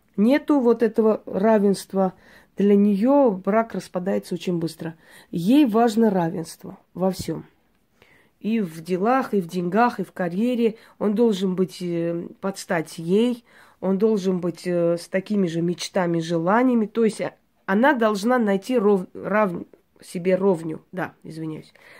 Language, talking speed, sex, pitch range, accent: Russian, 130 wpm, female, 180-225 Hz, native